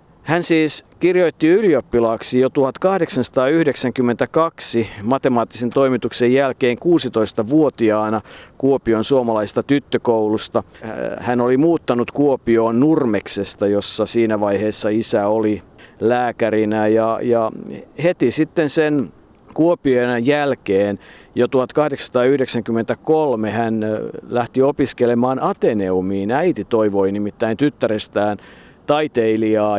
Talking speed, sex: 85 wpm, male